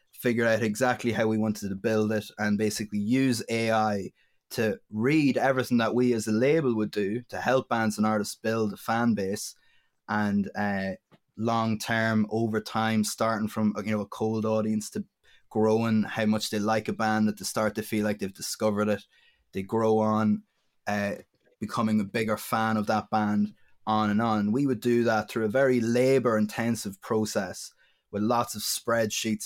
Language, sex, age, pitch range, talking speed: English, male, 20-39, 105-115 Hz, 185 wpm